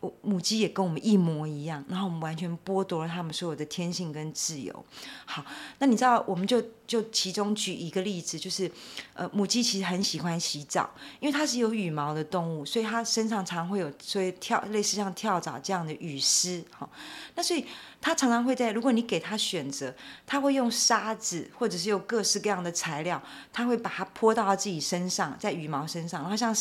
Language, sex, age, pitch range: Chinese, female, 30-49, 170-220 Hz